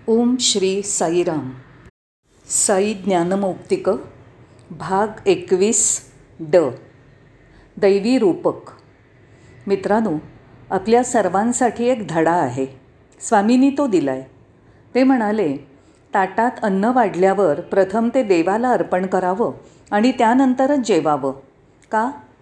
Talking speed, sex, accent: 90 wpm, female, native